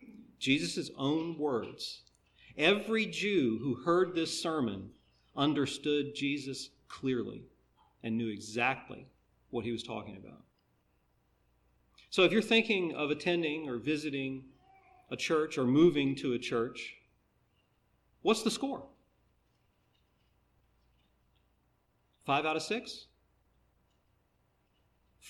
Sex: male